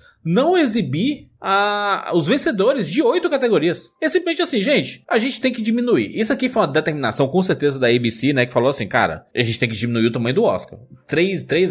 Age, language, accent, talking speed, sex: 20-39, Portuguese, Brazilian, 210 wpm, male